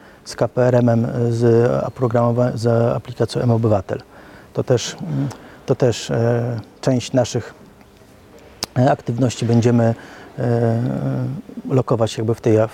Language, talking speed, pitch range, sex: Polish, 105 wpm, 115-125 Hz, male